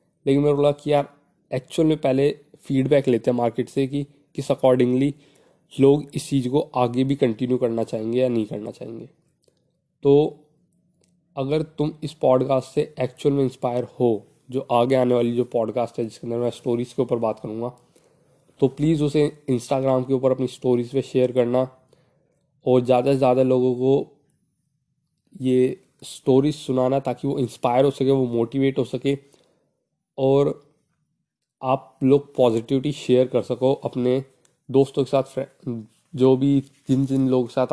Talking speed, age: 160 wpm, 20-39